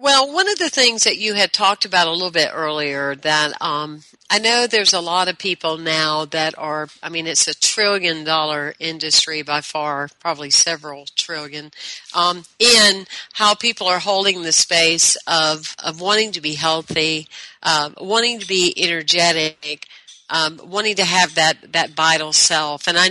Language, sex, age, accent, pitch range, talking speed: English, female, 50-69, American, 155-190 Hz, 175 wpm